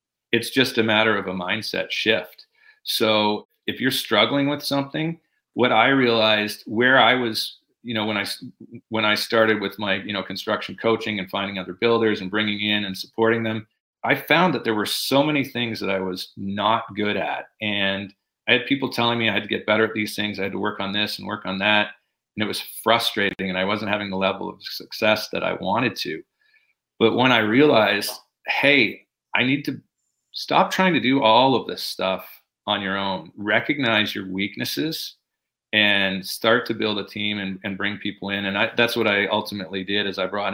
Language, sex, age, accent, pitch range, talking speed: English, male, 40-59, American, 100-115 Hz, 205 wpm